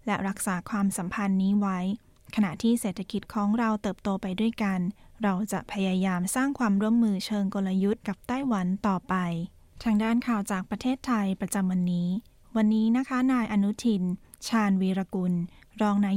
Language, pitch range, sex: Thai, 185-220 Hz, female